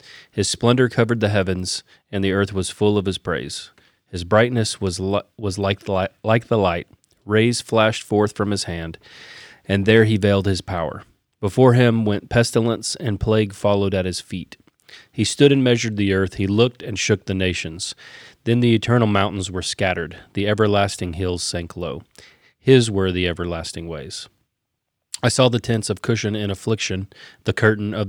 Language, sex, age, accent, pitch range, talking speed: English, male, 30-49, American, 95-115 Hz, 175 wpm